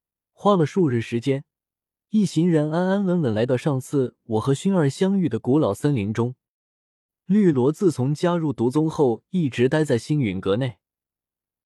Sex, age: male, 20-39